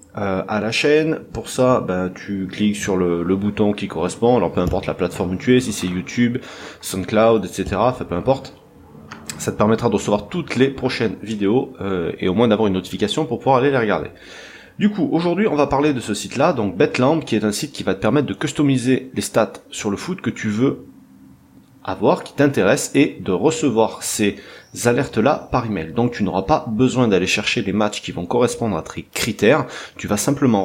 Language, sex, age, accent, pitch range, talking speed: French, male, 30-49, French, 95-125 Hz, 215 wpm